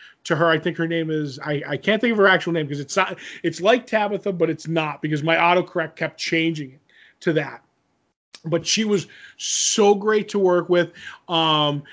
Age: 20-39